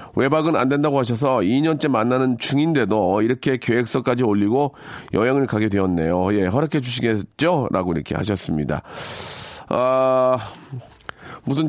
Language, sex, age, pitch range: Korean, male, 40-59, 115-155 Hz